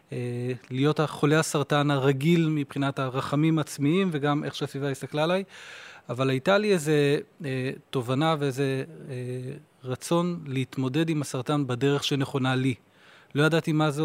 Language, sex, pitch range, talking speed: Hebrew, male, 135-160 Hz, 130 wpm